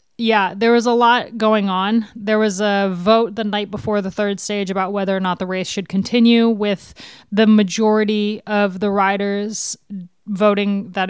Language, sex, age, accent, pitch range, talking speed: English, female, 20-39, American, 190-215 Hz, 180 wpm